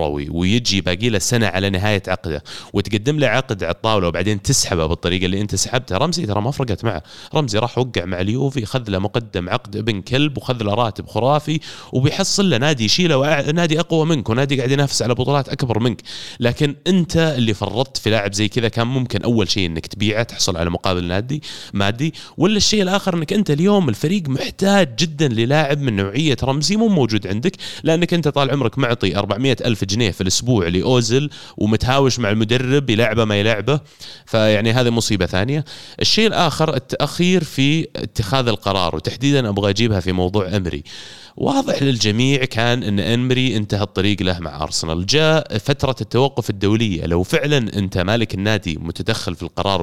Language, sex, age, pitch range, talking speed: Arabic, male, 30-49, 100-140 Hz, 170 wpm